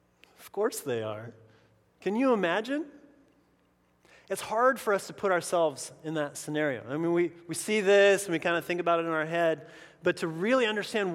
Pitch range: 135-195 Hz